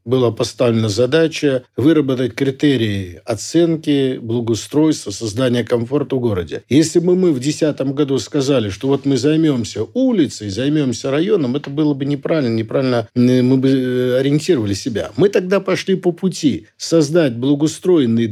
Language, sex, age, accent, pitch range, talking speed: Russian, male, 50-69, native, 120-160 Hz, 135 wpm